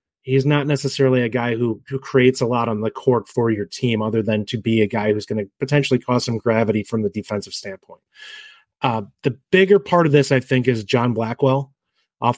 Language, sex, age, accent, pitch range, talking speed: English, male, 30-49, American, 115-145 Hz, 220 wpm